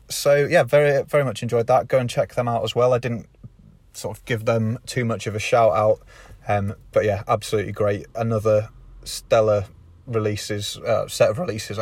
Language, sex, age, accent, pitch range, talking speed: English, male, 30-49, British, 110-135 Hz, 195 wpm